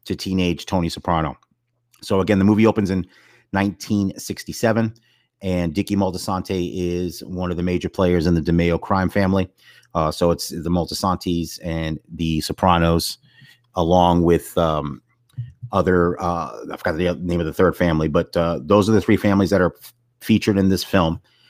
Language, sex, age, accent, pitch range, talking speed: English, male, 30-49, American, 85-105 Hz, 165 wpm